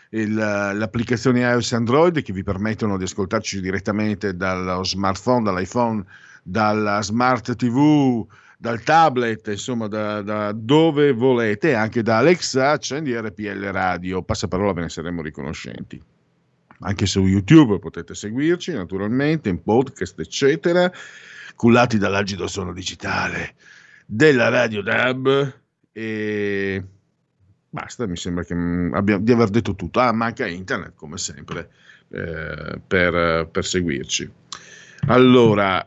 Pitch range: 95-120 Hz